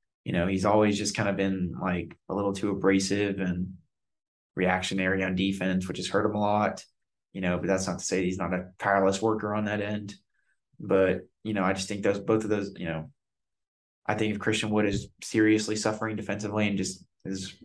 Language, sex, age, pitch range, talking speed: English, male, 20-39, 95-105 Hz, 210 wpm